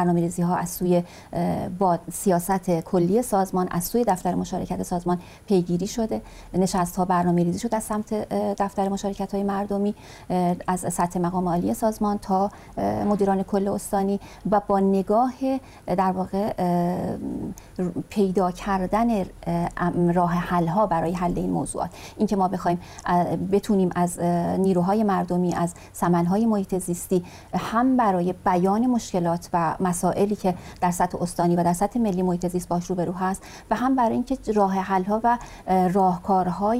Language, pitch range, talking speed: Persian, 175-200 Hz, 135 wpm